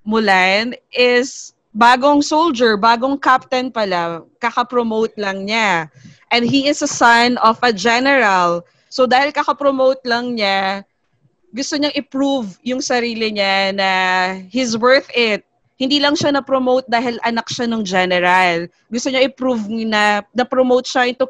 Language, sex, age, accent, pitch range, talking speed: English, female, 20-39, Filipino, 200-265 Hz, 135 wpm